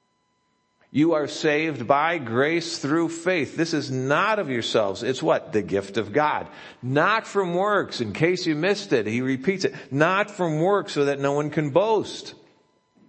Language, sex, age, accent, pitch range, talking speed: English, male, 50-69, American, 120-160 Hz, 175 wpm